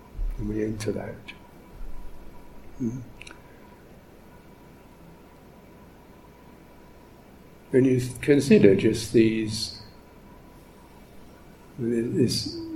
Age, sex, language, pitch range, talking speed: 60-79, male, English, 105-125 Hz, 45 wpm